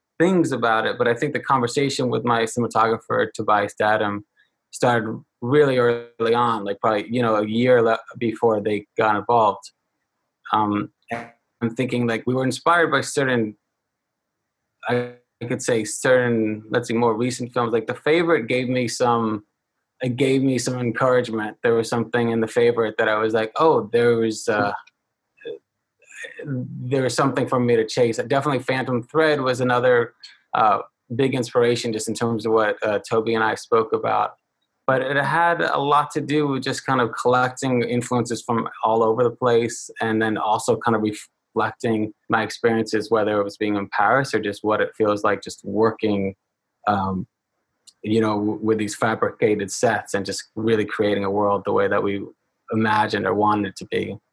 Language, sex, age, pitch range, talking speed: English, male, 20-39, 110-125 Hz, 175 wpm